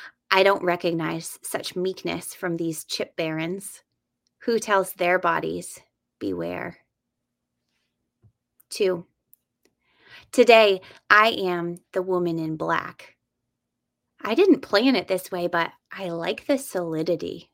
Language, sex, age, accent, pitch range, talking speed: English, female, 20-39, American, 170-200 Hz, 115 wpm